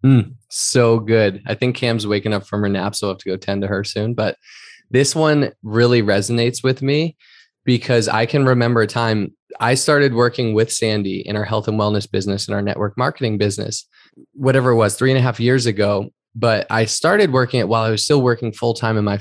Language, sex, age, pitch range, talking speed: English, male, 20-39, 105-125 Hz, 230 wpm